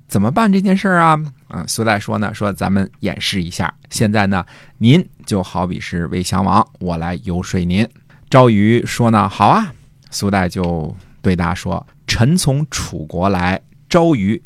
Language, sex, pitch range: Chinese, male, 95-140 Hz